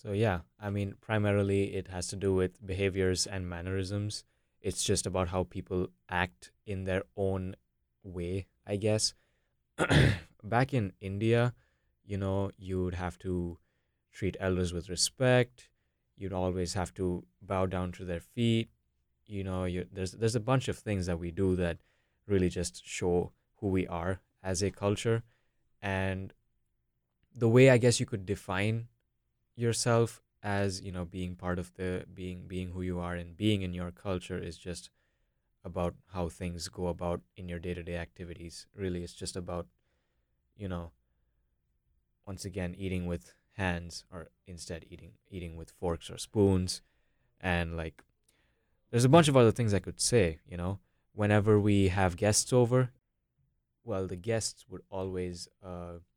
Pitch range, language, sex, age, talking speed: 85-100 Hz, English, male, 20-39, 160 wpm